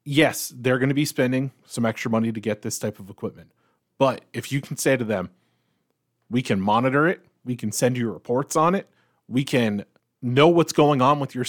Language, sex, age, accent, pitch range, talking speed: English, male, 30-49, American, 120-155 Hz, 215 wpm